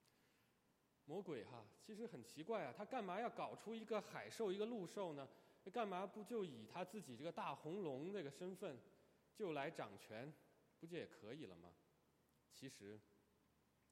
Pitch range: 115-180 Hz